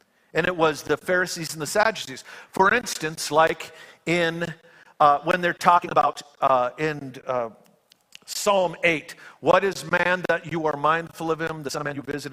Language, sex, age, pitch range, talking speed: English, male, 50-69, 140-180 Hz, 180 wpm